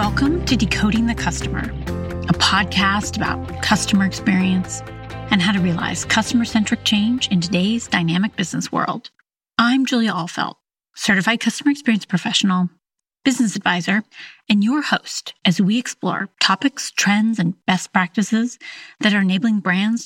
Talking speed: 135 wpm